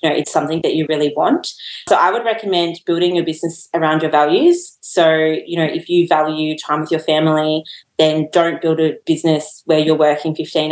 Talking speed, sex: 200 wpm, female